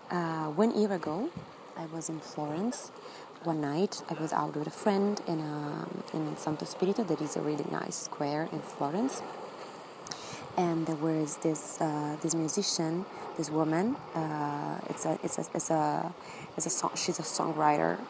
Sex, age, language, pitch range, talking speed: female, 20-39, English, 160-185 Hz, 165 wpm